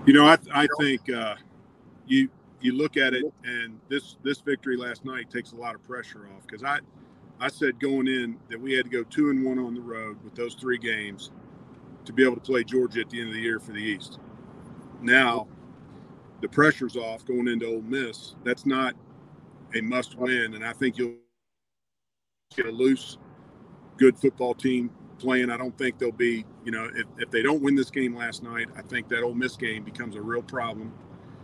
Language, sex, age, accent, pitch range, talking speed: English, male, 40-59, American, 115-130 Hz, 210 wpm